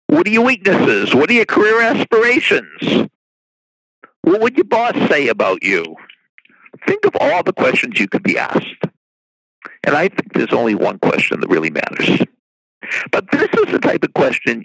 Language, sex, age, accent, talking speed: English, male, 60-79, American, 170 wpm